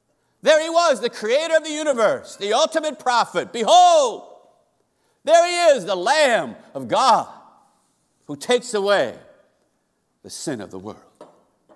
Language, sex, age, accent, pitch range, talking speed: English, male, 60-79, American, 200-245 Hz, 140 wpm